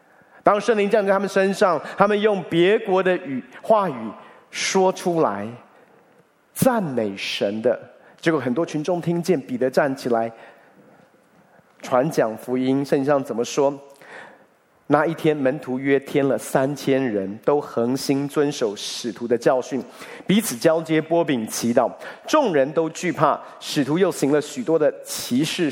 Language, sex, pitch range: Chinese, male, 140-205 Hz